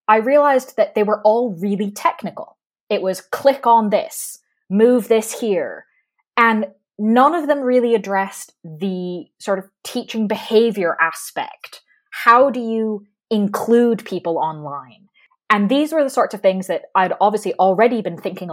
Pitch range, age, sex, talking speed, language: 170-235 Hz, 20-39, female, 150 wpm, English